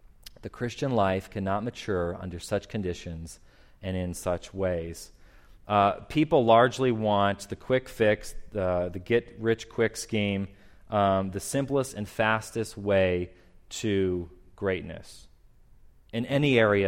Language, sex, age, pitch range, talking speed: English, male, 30-49, 90-120 Hz, 120 wpm